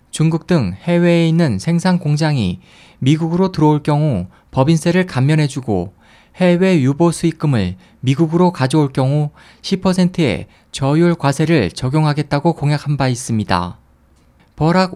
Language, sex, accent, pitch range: Korean, male, native, 130-170 Hz